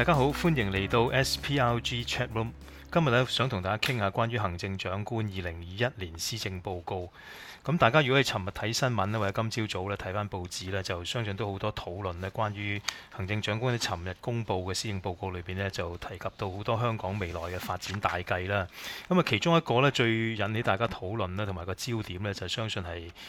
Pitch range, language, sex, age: 95-120 Hz, English, male, 20-39